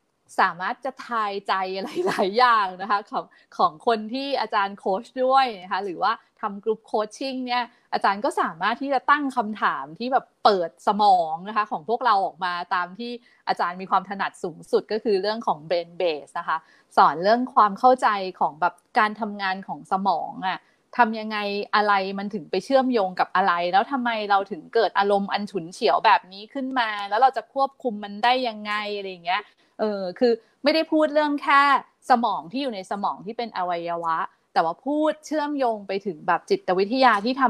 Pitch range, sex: 190-255 Hz, female